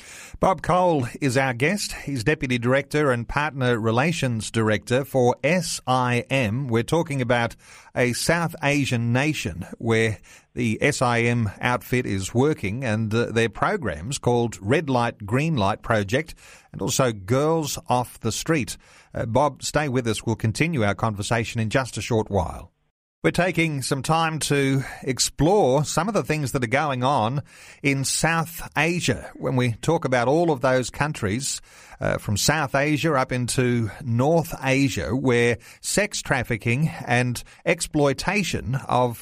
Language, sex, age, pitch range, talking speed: English, male, 40-59, 115-145 Hz, 145 wpm